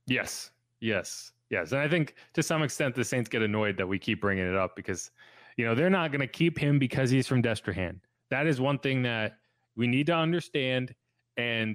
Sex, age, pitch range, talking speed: male, 20-39, 110-145 Hz, 215 wpm